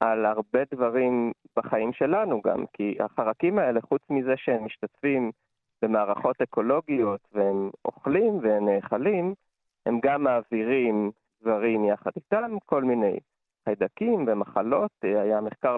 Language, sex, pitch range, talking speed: Hebrew, male, 110-175 Hz, 120 wpm